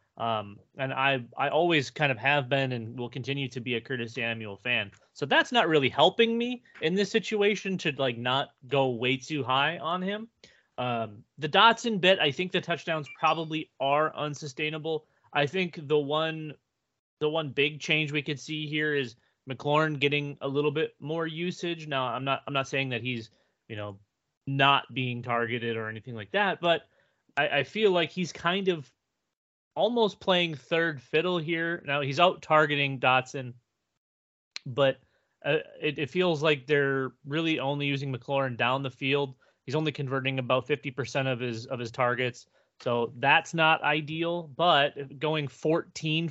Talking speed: 175 wpm